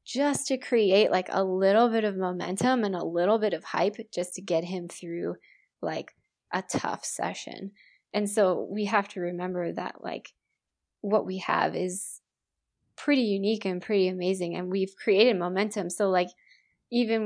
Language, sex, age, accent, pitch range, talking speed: English, female, 20-39, American, 180-210 Hz, 165 wpm